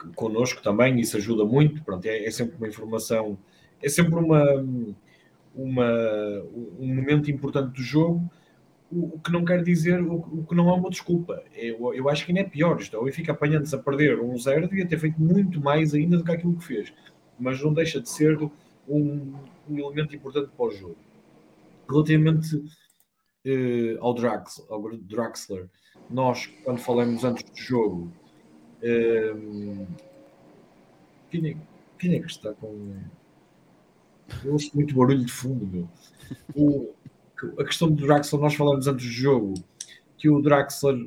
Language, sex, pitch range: English, male, 115-155 Hz